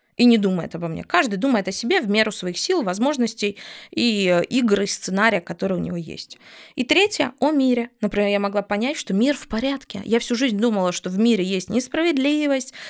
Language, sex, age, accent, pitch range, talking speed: Russian, female, 20-39, native, 185-235 Hz, 195 wpm